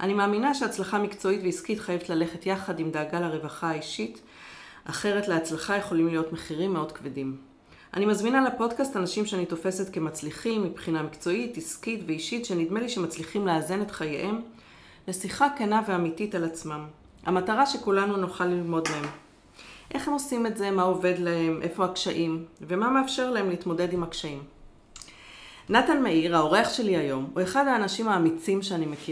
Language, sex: Hebrew, female